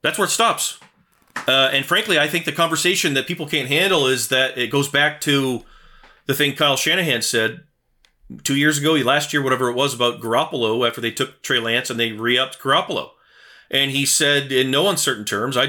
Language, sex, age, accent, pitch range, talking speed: English, male, 30-49, American, 120-170 Hz, 205 wpm